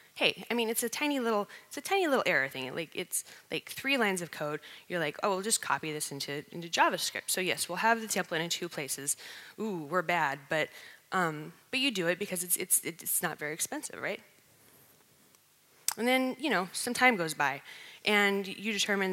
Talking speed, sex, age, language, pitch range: 210 wpm, female, 20-39, English, 155-200 Hz